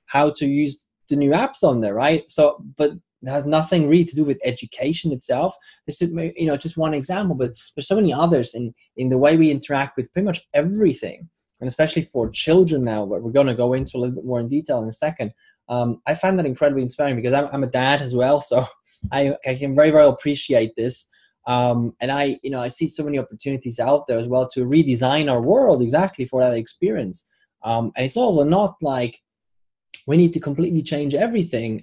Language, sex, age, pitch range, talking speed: English, male, 20-39, 125-155 Hz, 220 wpm